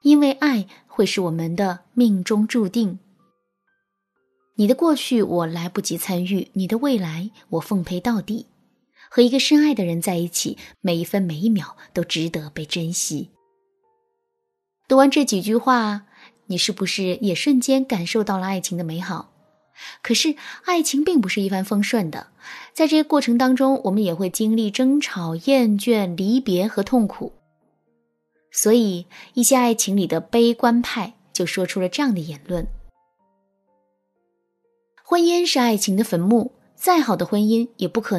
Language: Chinese